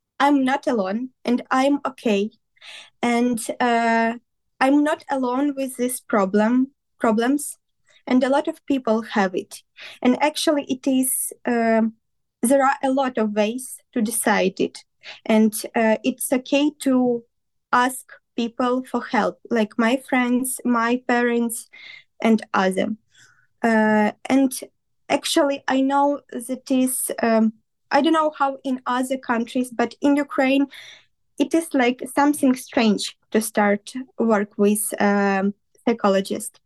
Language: English